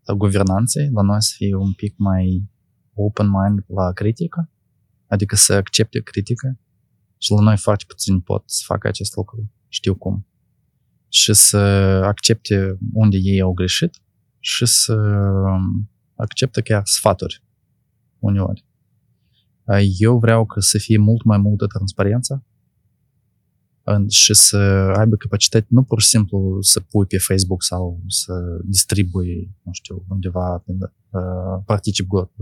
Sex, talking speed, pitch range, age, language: male, 130 wpm, 95-110 Hz, 20-39, Romanian